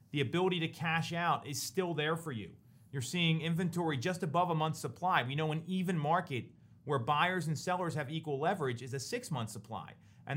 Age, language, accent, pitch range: 30-49, English, American, 130-180 Hz